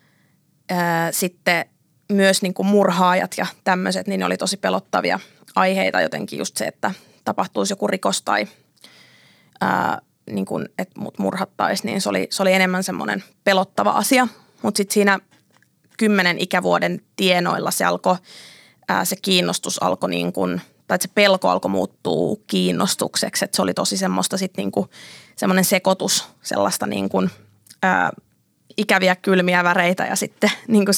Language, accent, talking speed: Finnish, native, 140 wpm